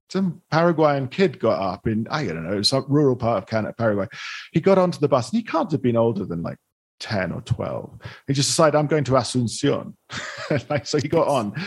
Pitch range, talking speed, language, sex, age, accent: 105-150 Hz, 215 wpm, English, male, 40-59, British